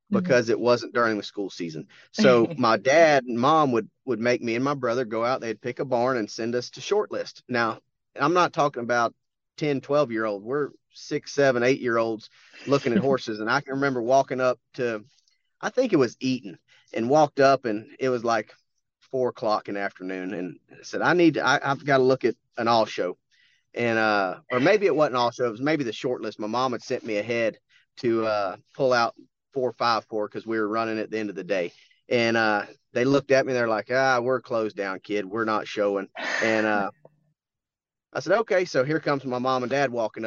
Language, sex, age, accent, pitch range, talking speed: English, male, 30-49, American, 115-160 Hz, 225 wpm